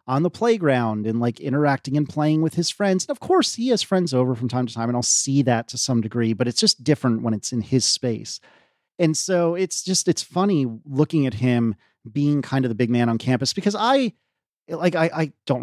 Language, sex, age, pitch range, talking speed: English, male, 30-49, 120-185 Hz, 235 wpm